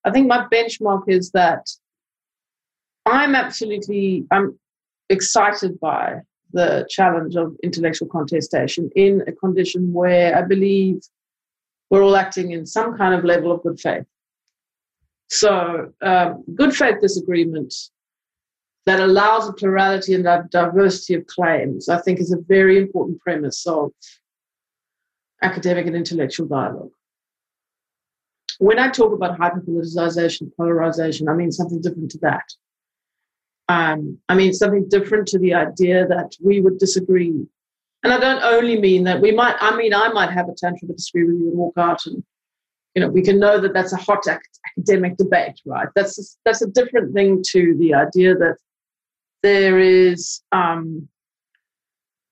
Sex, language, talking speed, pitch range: female, English, 145 wpm, 170-200 Hz